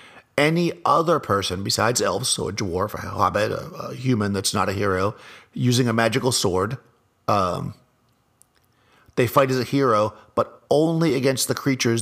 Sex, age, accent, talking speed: male, 50-69, American, 160 wpm